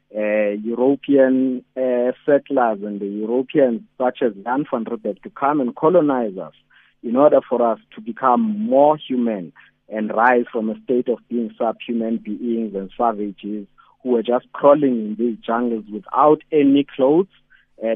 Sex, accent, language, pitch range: male, South African, English, 115-150 Hz